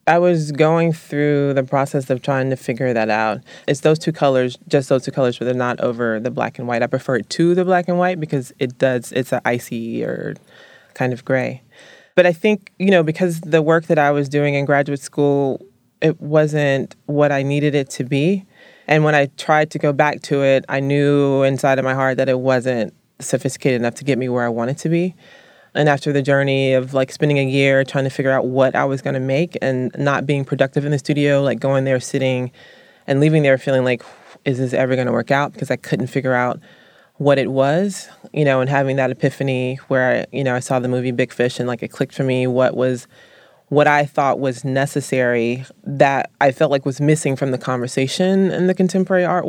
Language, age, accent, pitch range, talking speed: English, 20-39, American, 130-150 Hz, 225 wpm